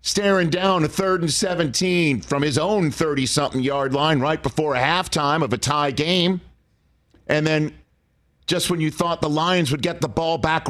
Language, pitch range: English, 125-185 Hz